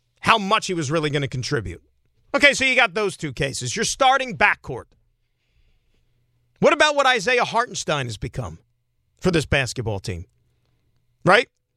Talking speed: 155 wpm